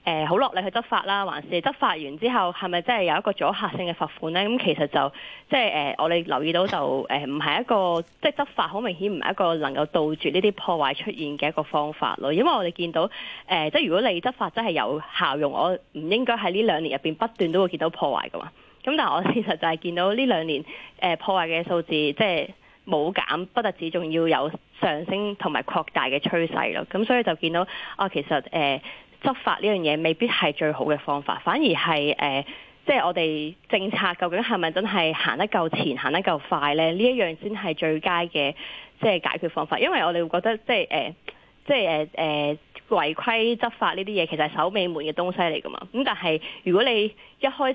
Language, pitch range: Chinese, 155-210 Hz